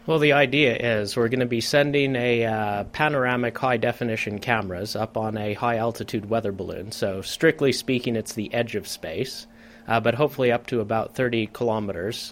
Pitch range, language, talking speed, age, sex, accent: 110-125 Hz, English, 175 wpm, 30-49, male, American